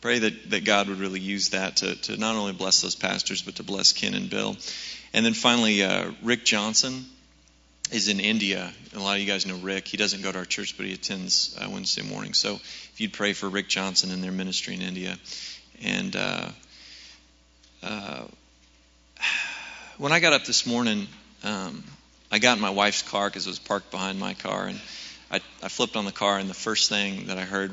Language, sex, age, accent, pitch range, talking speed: English, male, 30-49, American, 95-105 Hz, 210 wpm